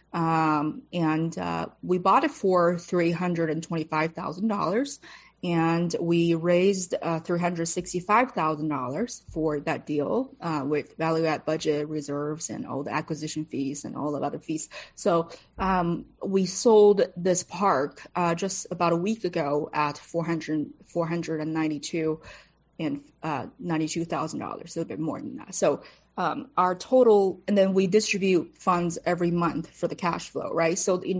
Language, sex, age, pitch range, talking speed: English, female, 20-39, 155-180 Hz, 175 wpm